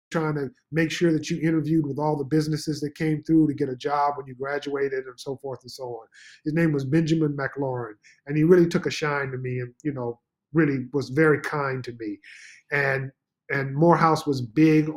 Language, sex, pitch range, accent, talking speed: English, male, 130-155 Hz, American, 215 wpm